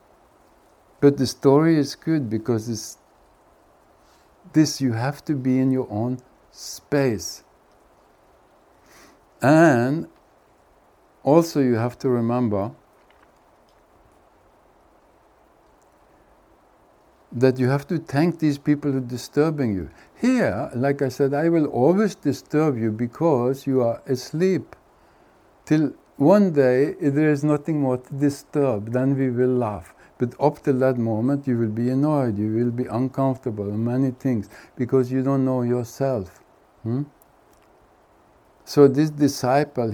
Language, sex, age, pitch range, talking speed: English, male, 60-79, 120-145 Hz, 125 wpm